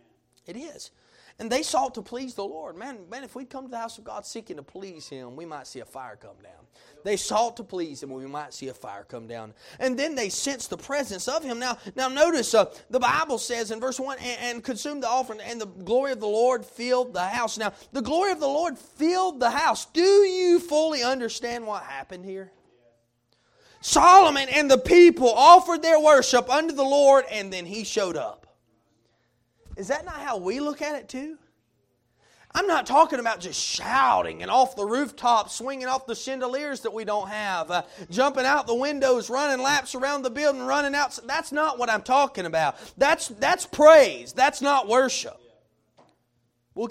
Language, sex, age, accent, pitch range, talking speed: English, male, 30-49, American, 220-285 Hz, 200 wpm